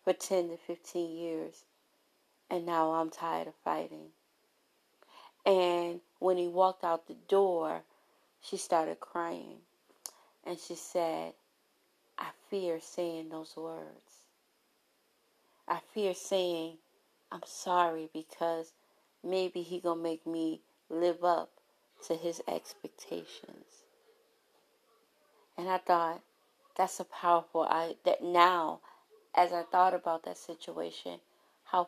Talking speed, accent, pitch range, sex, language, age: 115 wpm, American, 165-195 Hz, female, English, 30-49